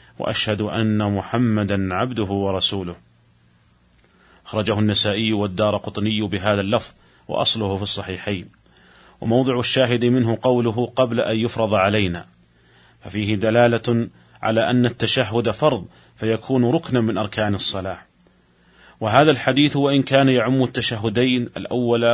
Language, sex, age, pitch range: Arabic, male, 40-59, 100-120 Hz